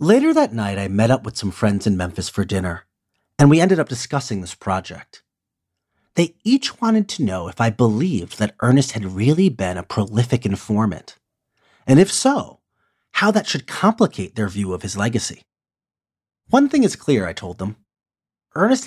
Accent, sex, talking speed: American, male, 180 wpm